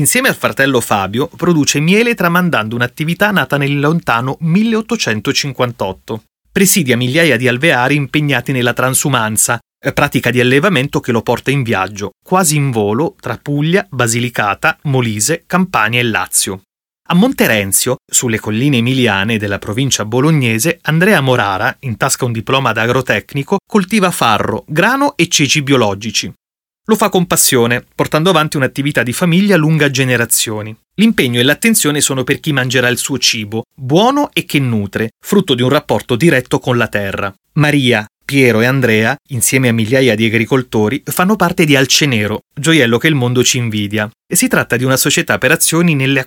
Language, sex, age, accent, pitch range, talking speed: Italian, male, 30-49, native, 120-160 Hz, 155 wpm